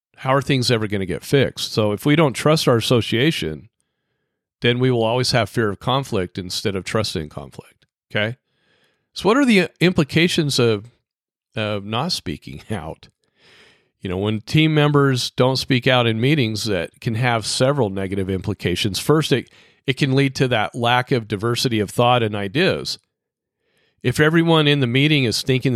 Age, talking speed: 40-59, 175 wpm